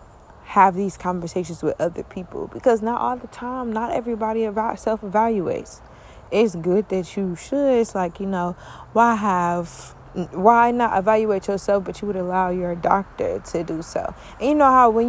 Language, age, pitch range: English, 20-39, 185-235 Hz